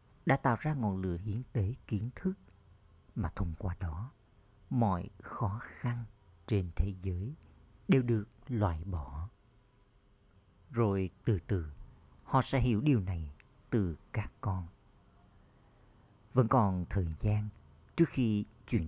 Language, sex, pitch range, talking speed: Vietnamese, male, 90-115 Hz, 130 wpm